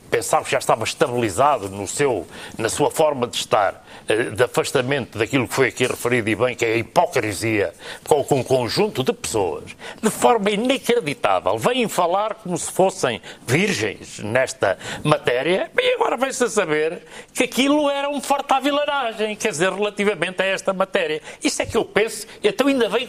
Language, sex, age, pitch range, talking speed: Portuguese, male, 60-79, 165-260 Hz, 170 wpm